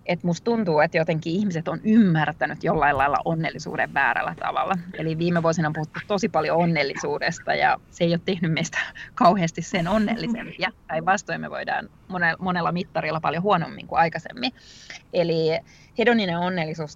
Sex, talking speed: female, 150 wpm